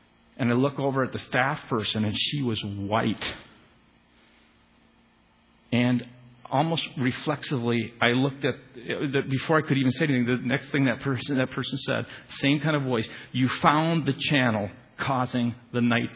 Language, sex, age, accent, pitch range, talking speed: English, male, 50-69, American, 115-140 Hz, 160 wpm